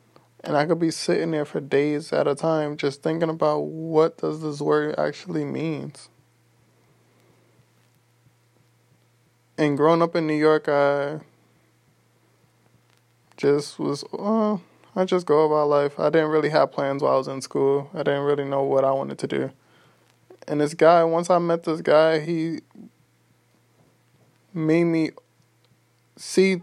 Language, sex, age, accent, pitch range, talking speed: English, male, 20-39, American, 140-160 Hz, 150 wpm